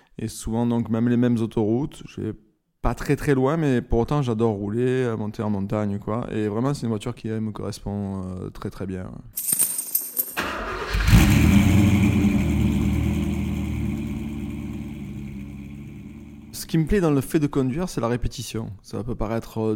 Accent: French